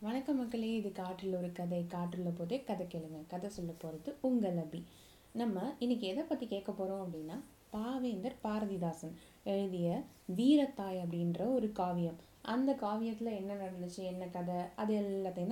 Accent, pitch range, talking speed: native, 185-250 Hz, 145 wpm